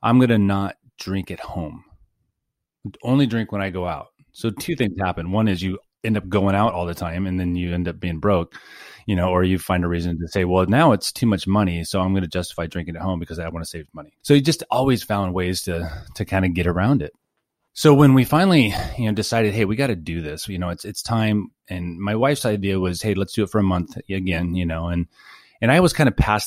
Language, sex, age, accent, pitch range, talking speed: English, male, 30-49, American, 90-105 Hz, 255 wpm